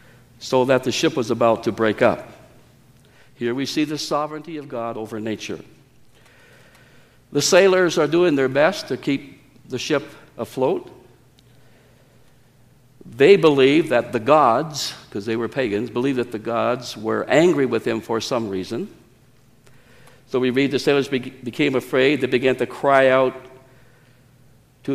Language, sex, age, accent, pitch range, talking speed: English, male, 60-79, American, 125-140 Hz, 150 wpm